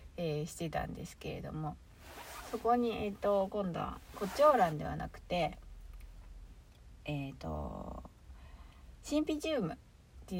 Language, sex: Japanese, female